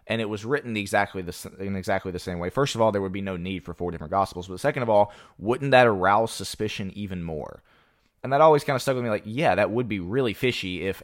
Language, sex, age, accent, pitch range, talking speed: English, male, 20-39, American, 90-110 Hz, 270 wpm